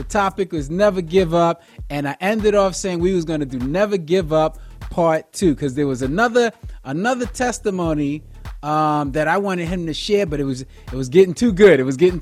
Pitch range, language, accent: 140-195 Hz, English, American